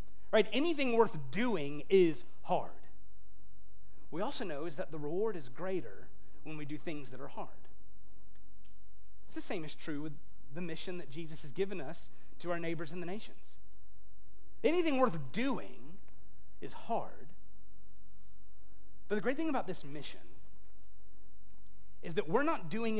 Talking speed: 150 wpm